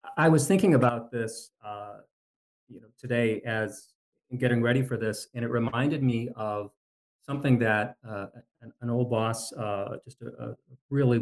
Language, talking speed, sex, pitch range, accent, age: English, 165 wpm, male, 110-130 Hz, American, 40-59